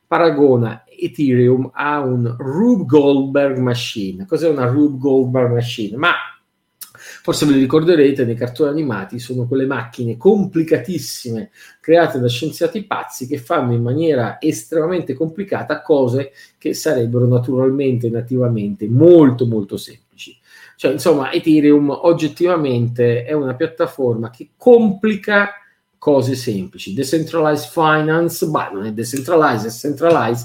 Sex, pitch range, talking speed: male, 120-155 Hz, 120 wpm